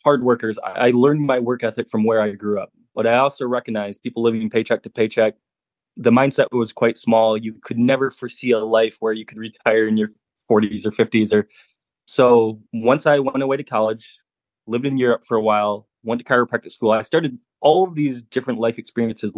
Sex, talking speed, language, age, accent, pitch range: male, 205 wpm, English, 20-39, American, 110-125 Hz